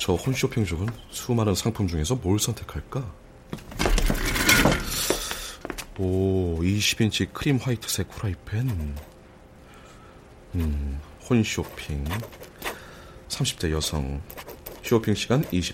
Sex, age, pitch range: male, 40-59, 75-110 Hz